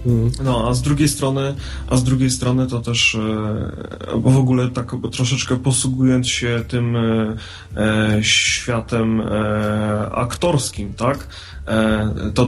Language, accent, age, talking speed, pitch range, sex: English, Polish, 30-49, 130 wpm, 115-145 Hz, male